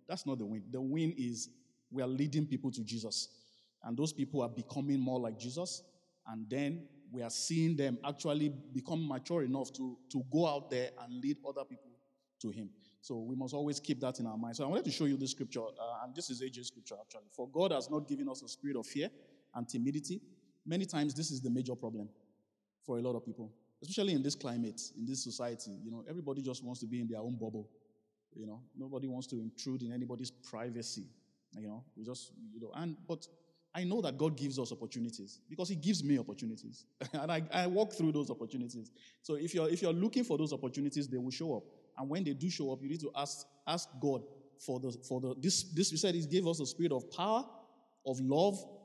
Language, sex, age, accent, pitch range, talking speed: English, male, 20-39, Nigerian, 120-160 Hz, 230 wpm